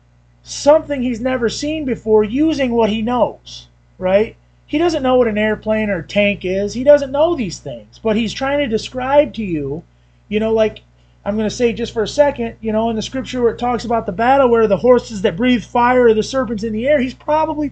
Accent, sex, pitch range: American, male, 190-265 Hz